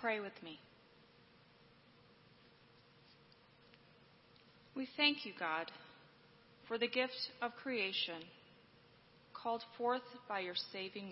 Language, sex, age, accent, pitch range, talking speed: English, female, 30-49, American, 185-240 Hz, 90 wpm